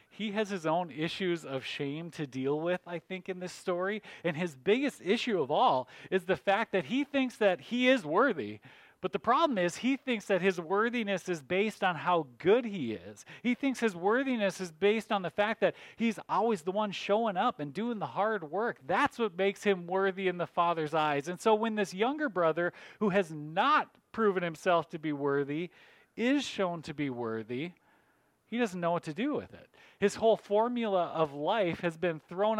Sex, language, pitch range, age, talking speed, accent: male, English, 155-215 Hz, 40-59, 205 wpm, American